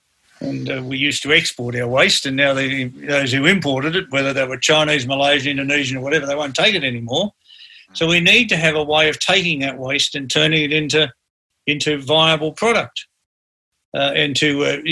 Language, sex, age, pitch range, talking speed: English, male, 50-69, 135-160 Hz, 195 wpm